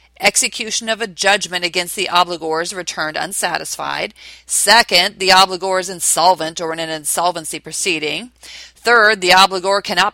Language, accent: English, American